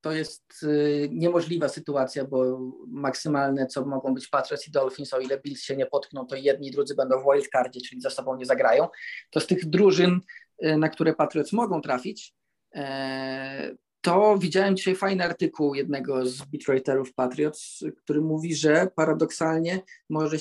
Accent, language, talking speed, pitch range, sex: native, Polish, 165 wpm, 140-160 Hz, male